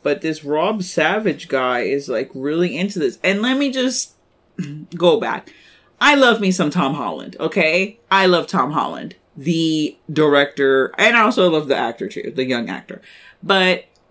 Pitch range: 145-215 Hz